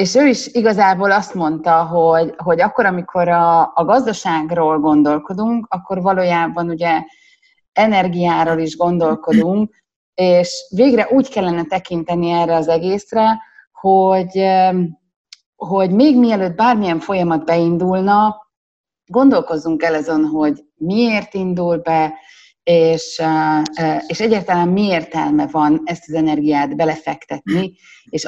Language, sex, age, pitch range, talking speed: Hungarian, female, 30-49, 165-225 Hz, 110 wpm